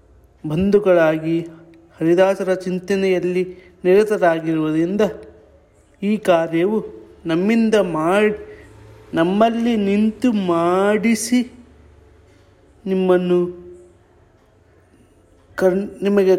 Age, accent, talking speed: 30-49, native, 50 wpm